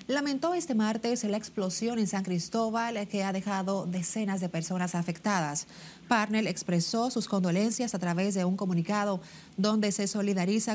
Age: 30-49